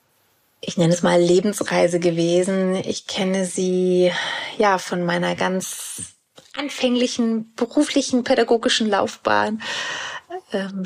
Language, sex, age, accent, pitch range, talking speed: German, female, 30-49, German, 180-215 Hz, 100 wpm